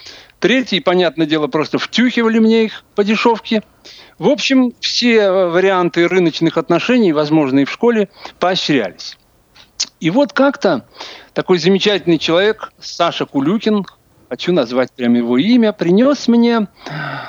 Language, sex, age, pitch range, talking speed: Russian, male, 50-69, 170-230 Hz, 120 wpm